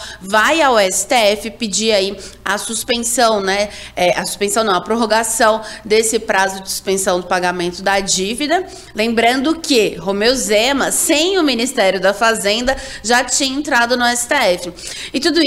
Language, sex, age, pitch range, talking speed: Portuguese, female, 20-39, 200-260 Hz, 145 wpm